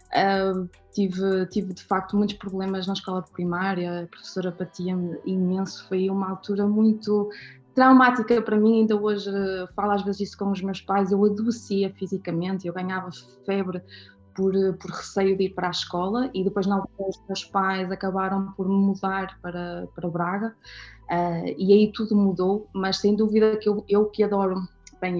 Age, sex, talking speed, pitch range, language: 20-39, female, 175 wpm, 190-210 Hz, Portuguese